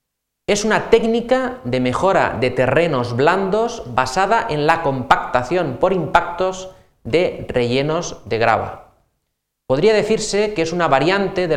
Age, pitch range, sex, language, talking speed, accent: 30-49, 125-185 Hz, male, Spanish, 130 wpm, Spanish